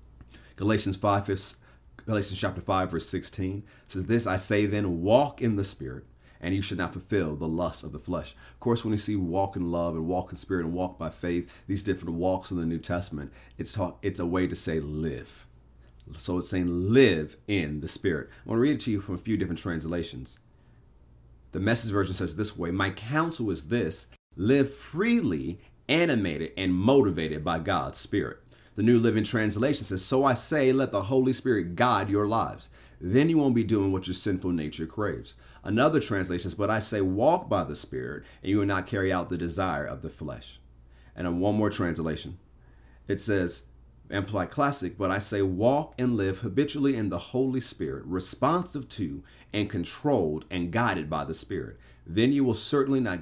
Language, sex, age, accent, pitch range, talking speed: English, male, 30-49, American, 80-110 Hz, 195 wpm